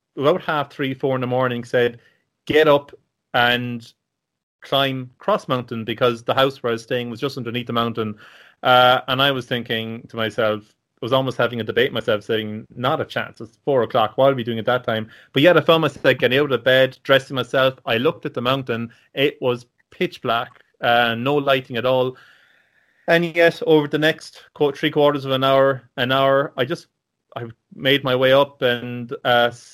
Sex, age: male, 30-49